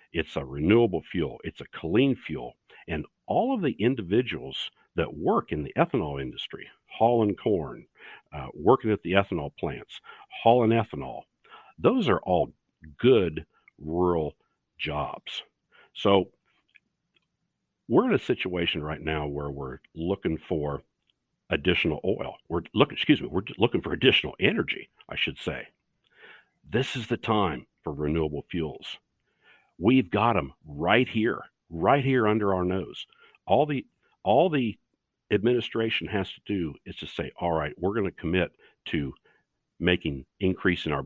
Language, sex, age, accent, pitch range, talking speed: English, male, 50-69, American, 75-105 Hz, 145 wpm